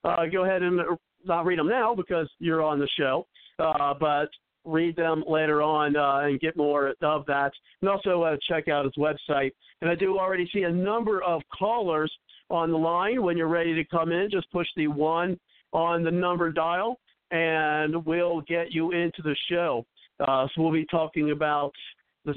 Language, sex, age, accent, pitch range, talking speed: English, male, 50-69, American, 150-180 Hz, 195 wpm